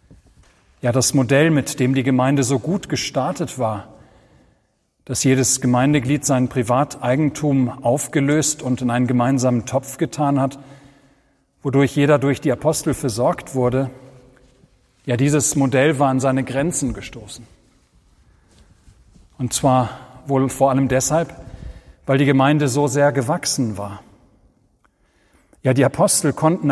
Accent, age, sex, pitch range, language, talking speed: German, 40-59, male, 125-145 Hz, German, 125 wpm